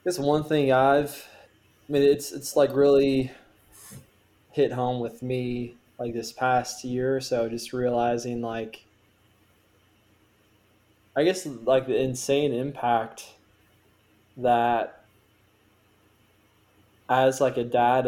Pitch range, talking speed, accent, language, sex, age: 105-125 Hz, 115 wpm, American, English, male, 20-39